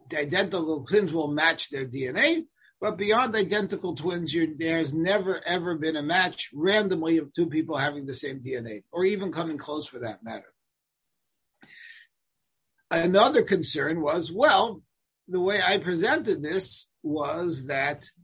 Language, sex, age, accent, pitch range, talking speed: English, male, 50-69, American, 160-220 Hz, 140 wpm